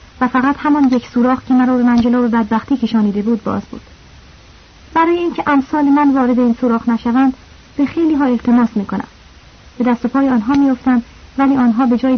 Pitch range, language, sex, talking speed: 230-280 Hz, Persian, female, 185 wpm